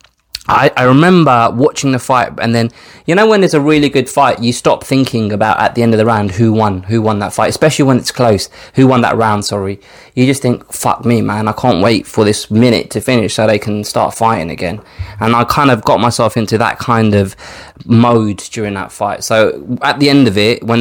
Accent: British